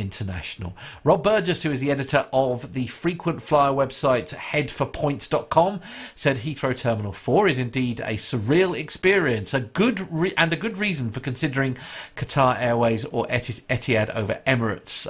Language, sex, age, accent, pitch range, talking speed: English, male, 50-69, British, 110-150 Hz, 145 wpm